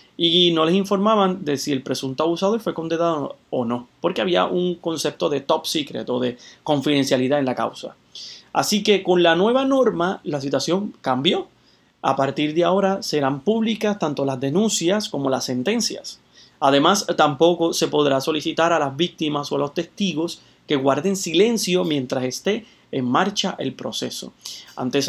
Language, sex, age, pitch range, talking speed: Spanish, male, 30-49, 140-185 Hz, 165 wpm